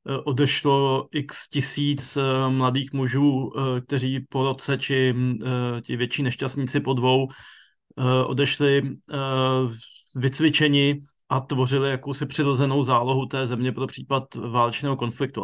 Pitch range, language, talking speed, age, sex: 125-145 Hz, Slovak, 105 wpm, 20-39, male